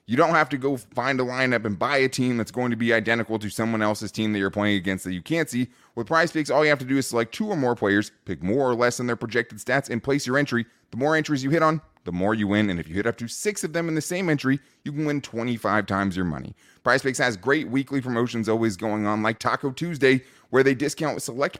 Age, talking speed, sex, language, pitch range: 20-39, 275 wpm, male, English, 105-140 Hz